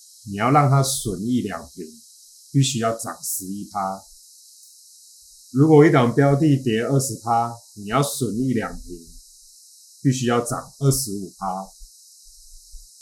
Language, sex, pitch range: Chinese, male, 100-135 Hz